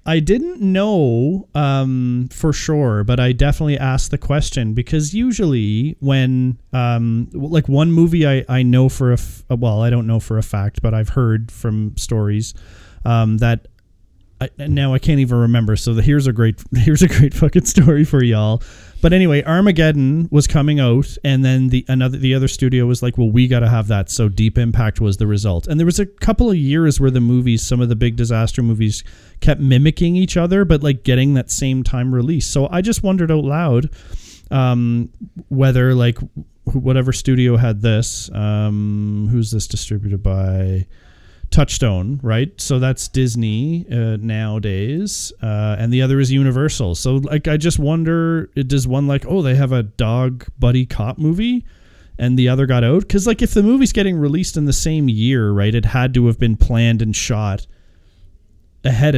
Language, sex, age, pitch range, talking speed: English, male, 30-49, 110-145 Hz, 185 wpm